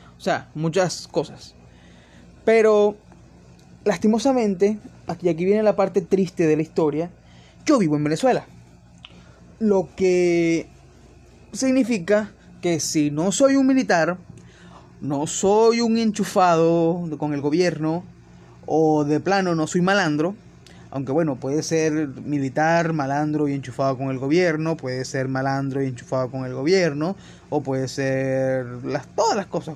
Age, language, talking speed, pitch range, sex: 20-39, Spanish, 135 wpm, 135-200 Hz, male